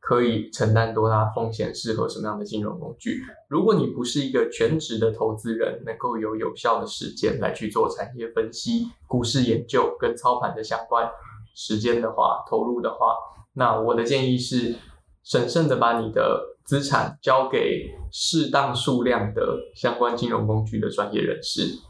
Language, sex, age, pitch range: Chinese, male, 20-39, 110-160 Hz